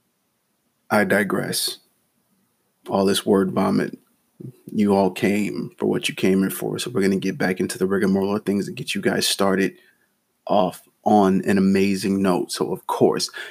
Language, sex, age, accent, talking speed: English, male, 30-49, American, 175 wpm